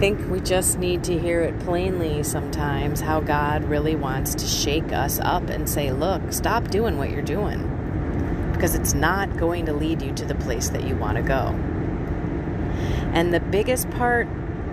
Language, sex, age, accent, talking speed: English, female, 30-49, American, 180 wpm